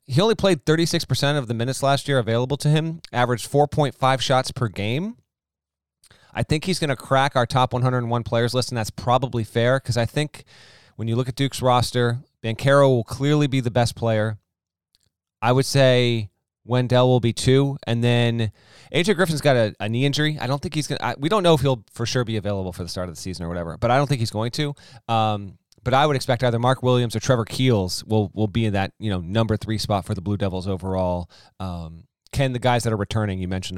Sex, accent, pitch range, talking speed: male, American, 105-135 Hz, 230 wpm